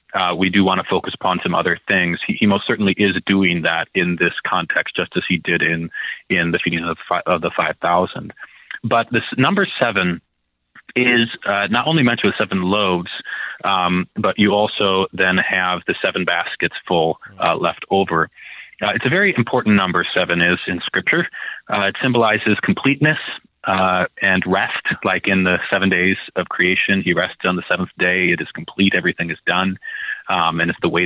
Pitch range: 95-115 Hz